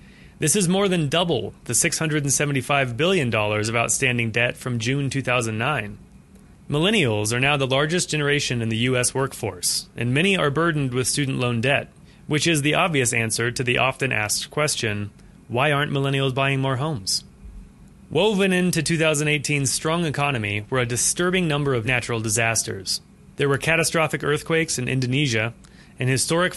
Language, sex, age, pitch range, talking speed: English, male, 30-49, 120-150 Hz, 155 wpm